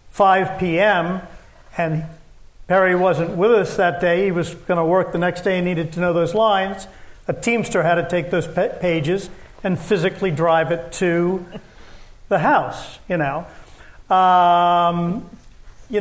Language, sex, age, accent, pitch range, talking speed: English, male, 50-69, American, 175-210 Hz, 155 wpm